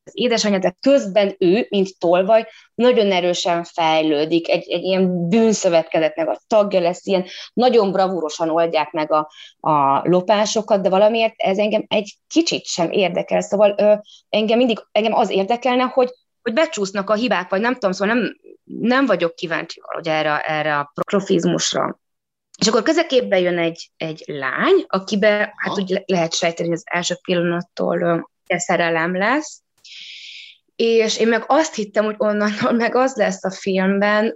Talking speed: 155 wpm